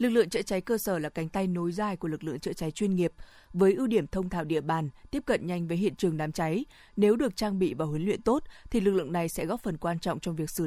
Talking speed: 300 wpm